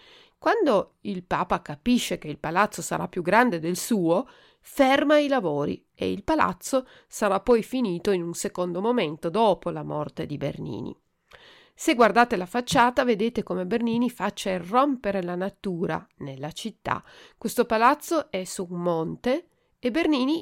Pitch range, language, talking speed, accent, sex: 180-245 Hz, Italian, 150 wpm, native, female